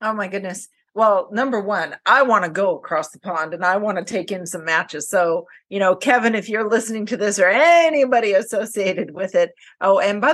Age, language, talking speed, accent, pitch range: 40-59, English, 220 wpm, American, 175-235 Hz